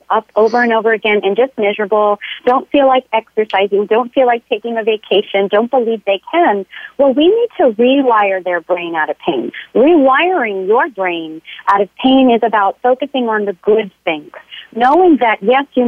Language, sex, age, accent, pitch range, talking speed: English, female, 40-59, American, 210-255 Hz, 185 wpm